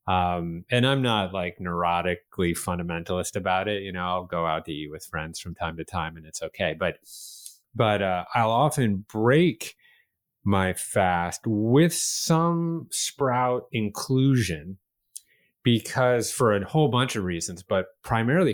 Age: 30-49